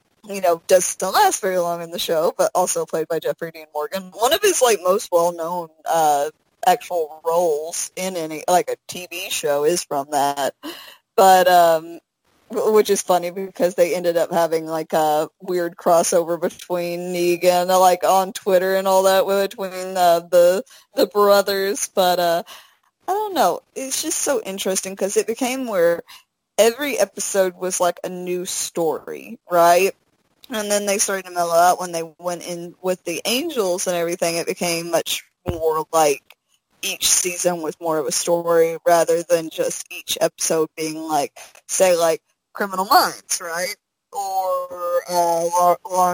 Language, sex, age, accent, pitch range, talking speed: English, female, 20-39, American, 170-195 Hz, 165 wpm